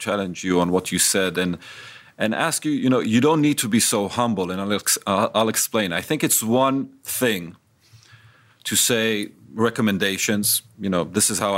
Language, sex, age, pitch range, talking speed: English, male, 40-59, 100-125 Hz, 190 wpm